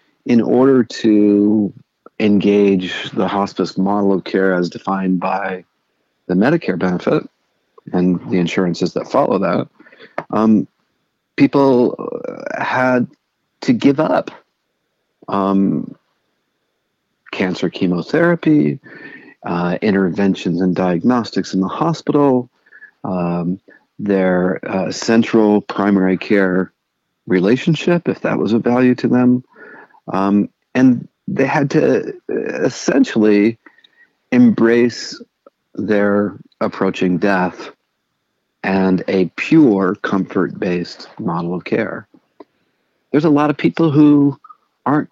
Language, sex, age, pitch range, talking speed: English, male, 50-69, 95-130 Hz, 100 wpm